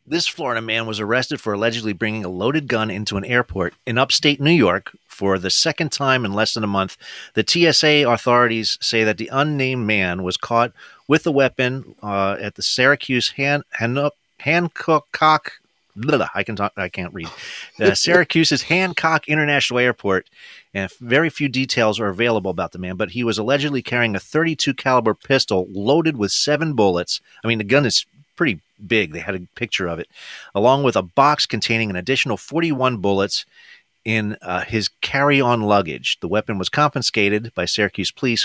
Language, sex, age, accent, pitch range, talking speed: English, male, 30-49, American, 100-135 Hz, 180 wpm